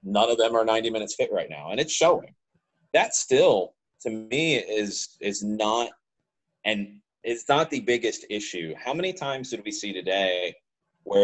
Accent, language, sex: American, English, male